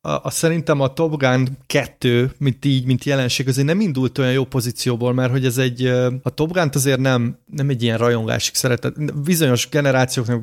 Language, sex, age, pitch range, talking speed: Hungarian, male, 30-49, 125-145 Hz, 180 wpm